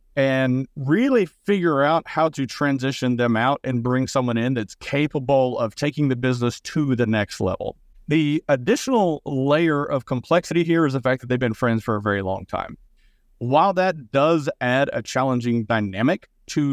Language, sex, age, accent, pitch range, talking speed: English, male, 40-59, American, 120-160 Hz, 175 wpm